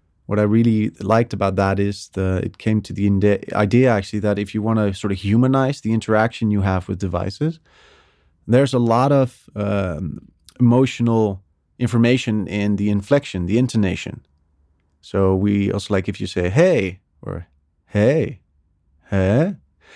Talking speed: 155 wpm